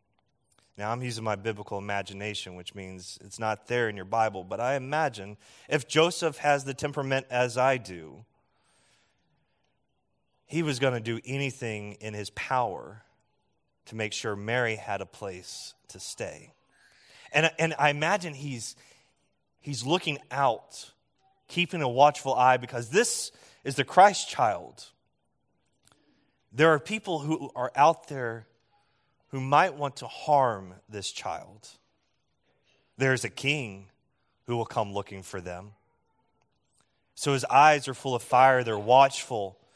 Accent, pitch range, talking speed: American, 105-140 Hz, 140 wpm